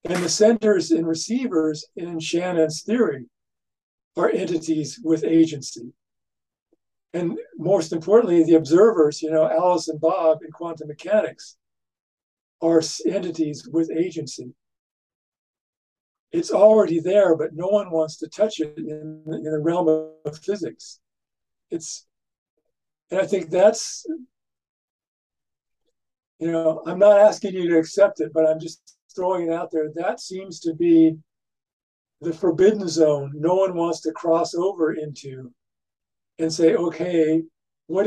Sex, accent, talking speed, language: male, American, 130 wpm, English